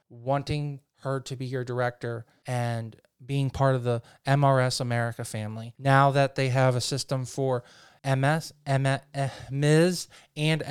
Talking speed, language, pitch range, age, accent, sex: 135 wpm, English, 130-160 Hz, 20-39, American, male